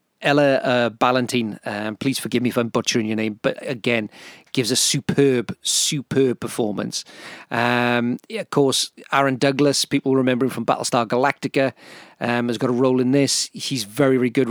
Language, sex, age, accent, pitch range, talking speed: English, male, 40-59, British, 120-145 Hz, 175 wpm